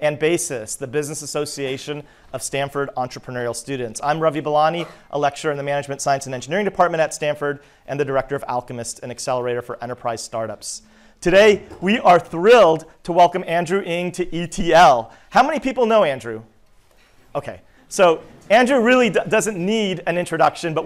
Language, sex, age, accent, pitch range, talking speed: English, male, 40-59, American, 135-170 Hz, 165 wpm